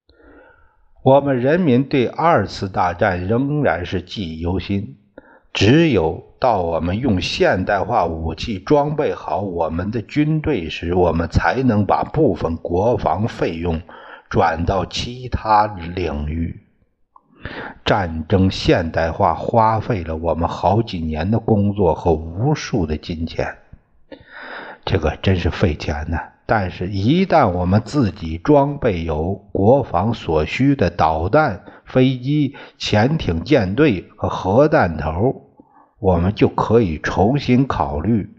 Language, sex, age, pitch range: Chinese, male, 60-79, 85-130 Hz